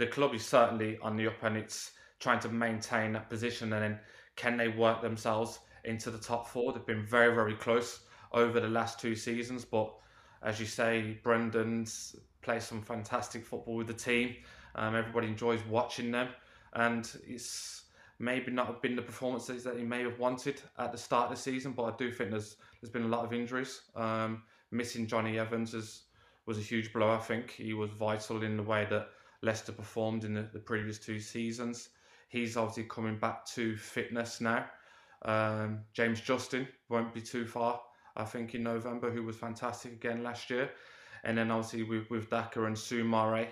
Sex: male